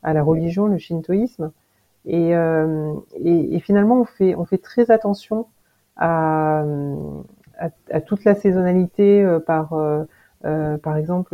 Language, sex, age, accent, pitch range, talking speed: French, female, 40-59, French, 155-190 Hz, 145 wpm